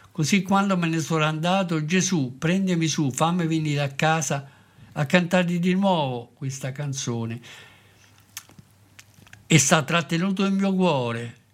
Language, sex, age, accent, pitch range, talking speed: Italian, male, 60-79, native, 130-175 Hz, 130 wpm